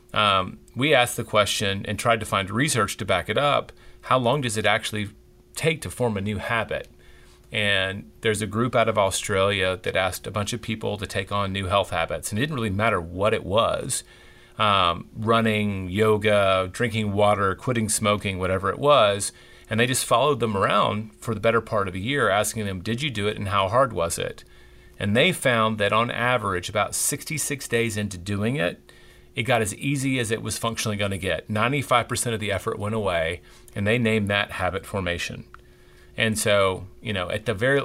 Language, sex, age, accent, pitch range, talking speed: English, male, 40-59, American, 100-120 Hz, 205 wpm